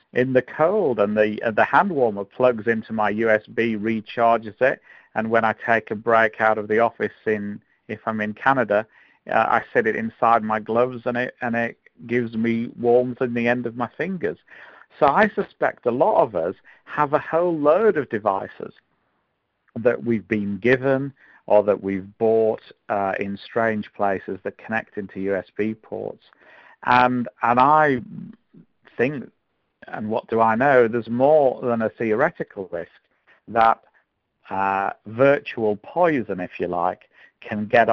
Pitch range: 105-120 Hz